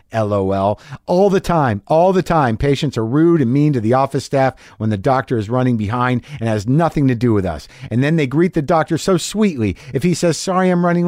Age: 50-69